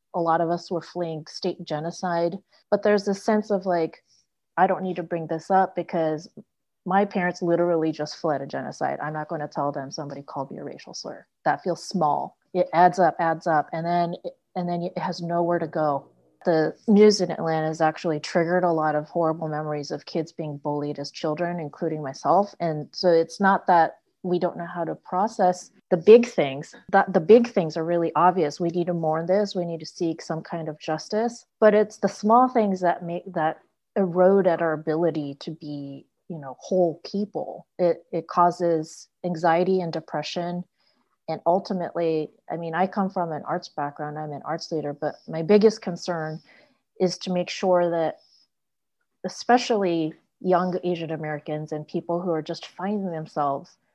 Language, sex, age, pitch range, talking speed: English, female, 30-49, 155-185 Hz, 190 wpm